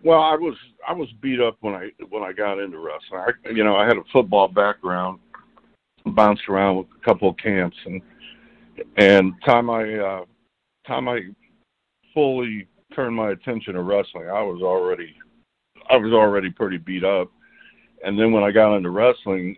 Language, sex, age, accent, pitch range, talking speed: English, male, 60-79, American, 95-120 Hz, 180 wpm